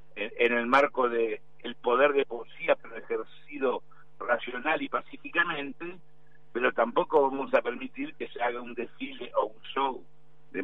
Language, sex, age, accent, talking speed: Spanish, male, 60-79, Argentinian, 150 wpm